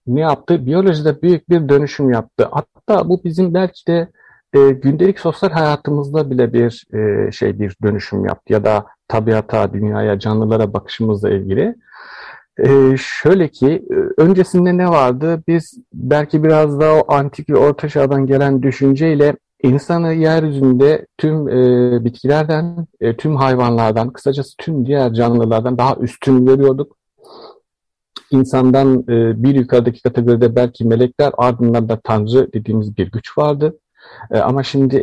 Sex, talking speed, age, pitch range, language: male, 130 wpm, 50-69, 120-145 Hz, Turkish